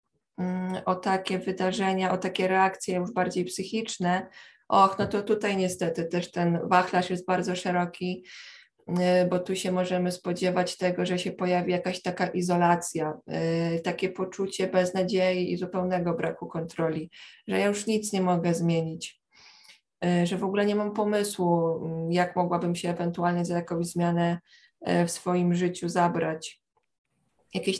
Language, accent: Polish, native